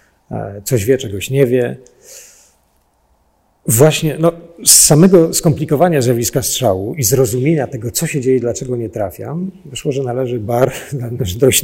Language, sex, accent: Polish, male, native